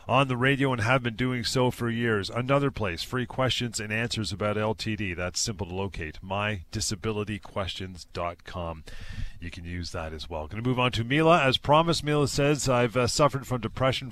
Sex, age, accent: male, 40-59, American